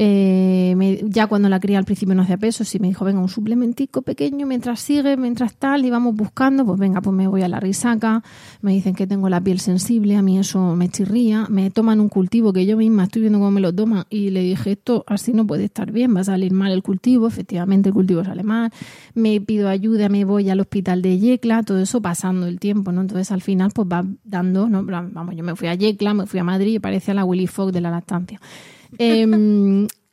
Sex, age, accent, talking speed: female, 30-49, Spanish, 235 wpm